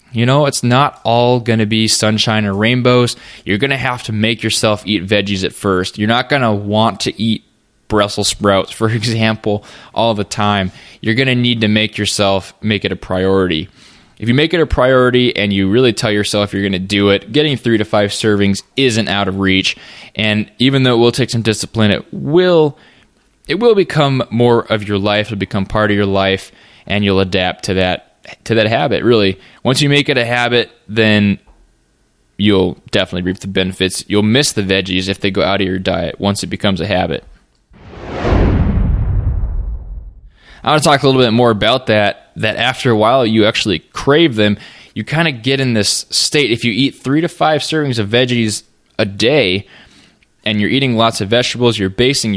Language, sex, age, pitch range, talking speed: English, male, 20-39, 100-120 Hz, 200 wpm